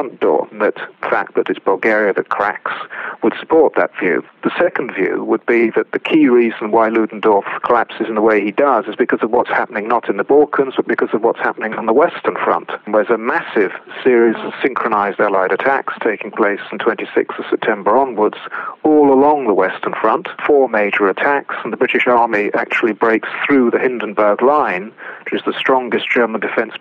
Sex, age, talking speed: male, 40-59, 200 wpm